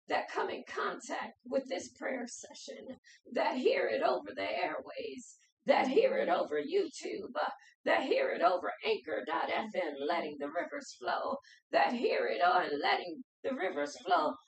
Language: English